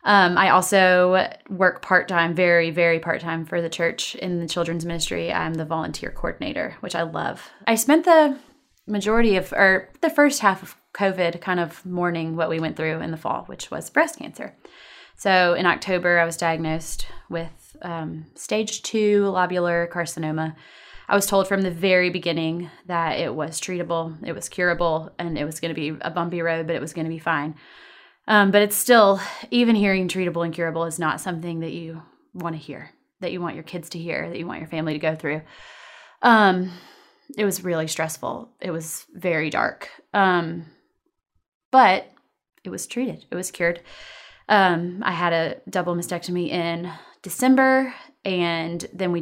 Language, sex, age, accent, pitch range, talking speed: English, female, 20-39, American, 165-195 Hz, 180 wpm